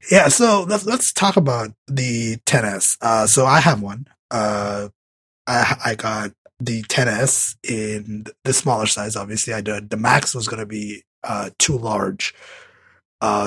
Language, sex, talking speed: English, male, 155 wpm